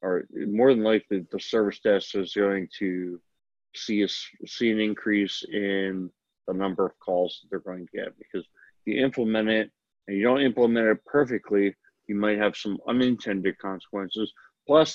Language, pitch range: English, 95-110 Hz